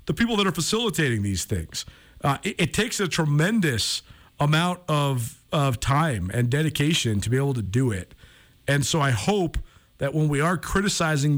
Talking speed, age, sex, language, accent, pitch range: 180 wpm, 50-69, male, English, American, 120-160 Hz